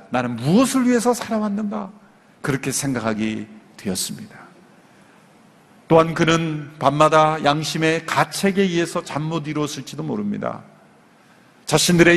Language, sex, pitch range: Korean, male, 140-205 Hz